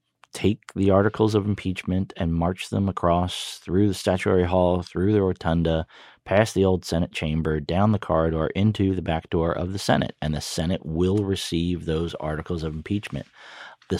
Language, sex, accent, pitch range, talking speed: English, male, American, 80-95 Hz, 175 wpm